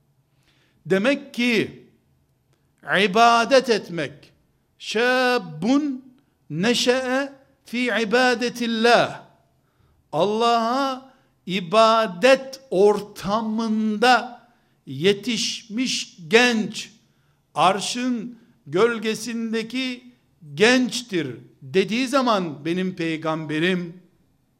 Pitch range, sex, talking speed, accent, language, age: 165-245 Hz, male, 50 wpm, native, Turkish, 60-79